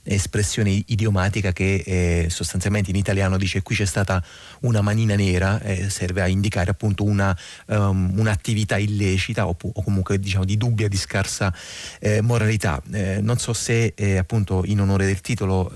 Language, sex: Italian, male